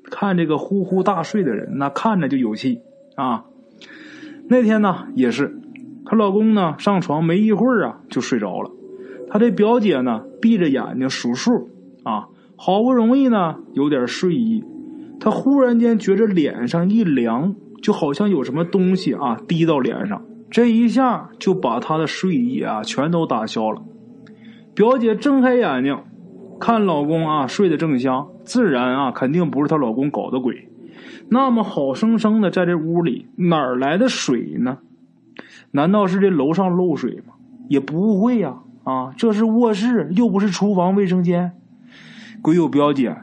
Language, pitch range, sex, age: Chinese, 160-240 Hz, male, 20-39